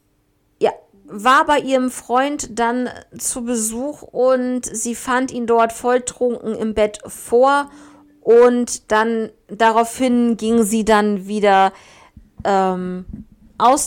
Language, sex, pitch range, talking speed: German, female, 205-250 Hz, 110 wpm